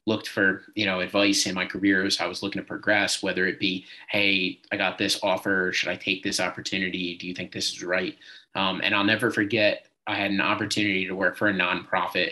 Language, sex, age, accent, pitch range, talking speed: English, male, 20-39, American, 95-105 Hz, 230 wpm